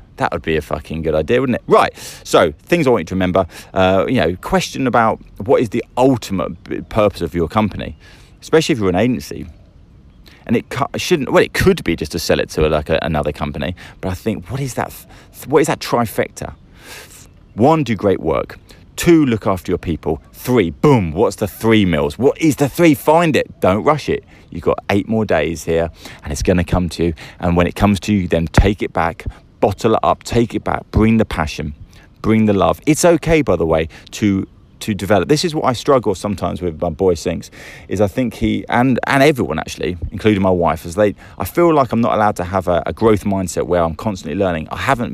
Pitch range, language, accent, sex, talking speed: 85-110 Hz, English, British, male, 225 wpm